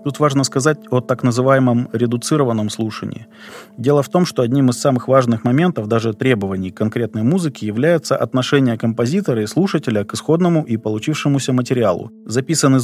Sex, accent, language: male, native, Russian